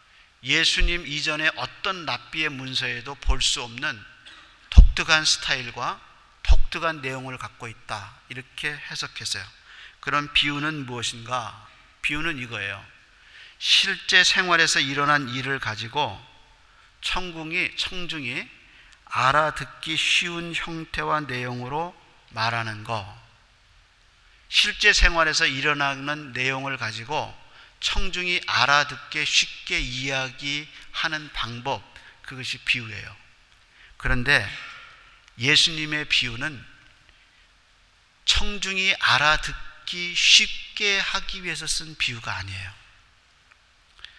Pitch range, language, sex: 120-160 Hz, Korean, male